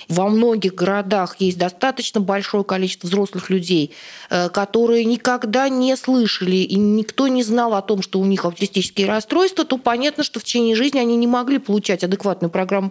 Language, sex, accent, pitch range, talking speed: Russian, female, native, 190-235 Hz, 165 wpm